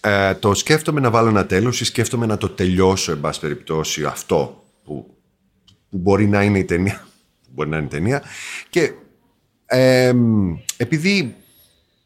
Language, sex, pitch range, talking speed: Greek, male, 90-125 Hz, 155 wpm